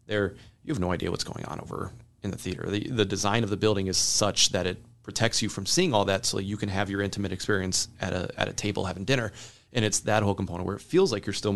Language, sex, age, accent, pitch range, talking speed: English, male, 30-49, American, 95-115 Hz, 280 wpm